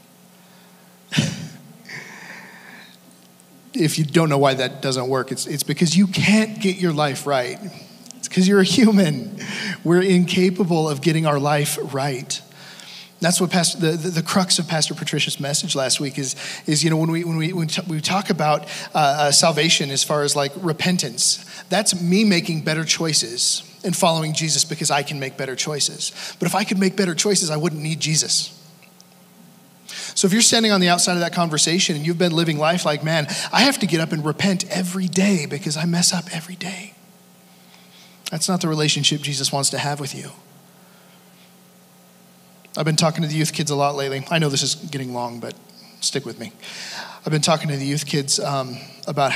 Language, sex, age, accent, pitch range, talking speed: English, male, 40-59, American, 145-185 Hz, 195 wpm